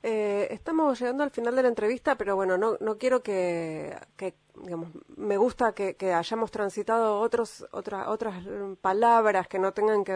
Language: Spanish